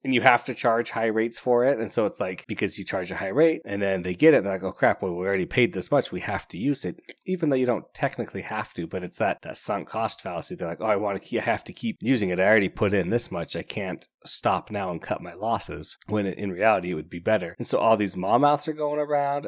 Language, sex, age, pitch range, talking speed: English, male, 30-49, 95-120 Hz, 300 wpm